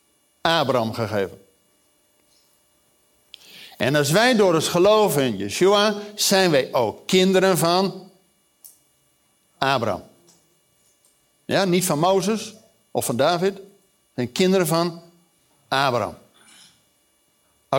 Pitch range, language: 170-225 Hz, Dutch